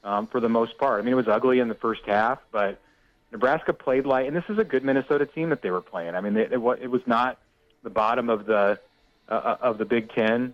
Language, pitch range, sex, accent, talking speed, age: English, 110-130 Hz, male, American, 260 wpm, 30-49